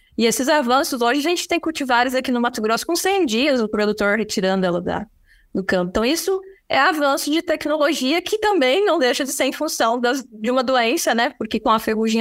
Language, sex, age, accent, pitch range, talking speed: Portuguese, female, 20-39, Brazilian, 205-275 Hz, 210 wpm